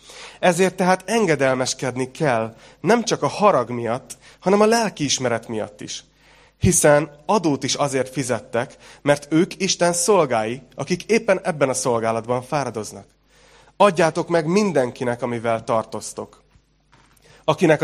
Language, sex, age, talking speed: Hungarian, male, 30-49, 120 wpm